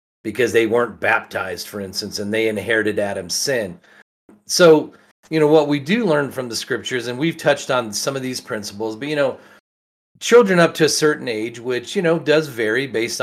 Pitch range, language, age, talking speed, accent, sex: 105-145 Hz, English, 40-59, 200 wpm, American, male